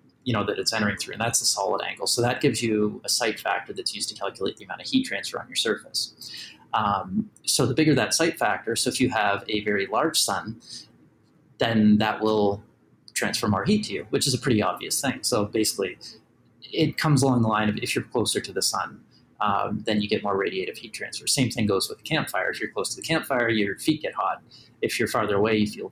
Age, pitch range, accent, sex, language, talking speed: 30-49, 105-130 Hz, American, male, English, 240 wpm